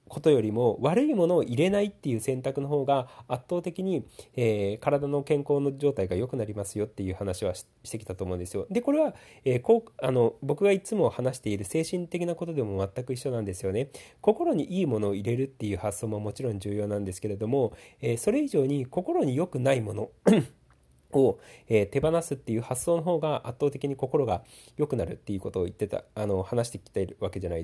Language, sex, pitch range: Japanese, male, 105-145 Hz